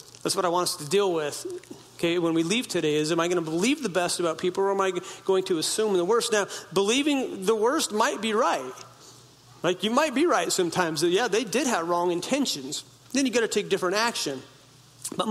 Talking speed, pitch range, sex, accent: 225 wpm, 155-195 Hz, male, American